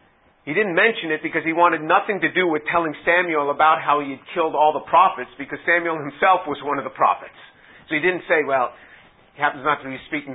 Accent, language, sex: American, English, male